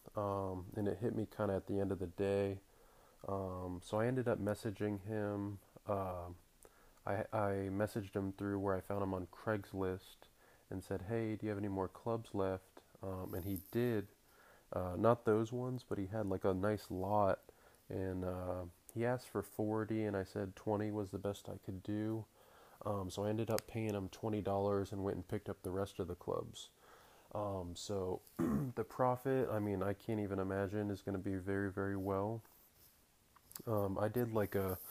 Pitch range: 95-110 Hz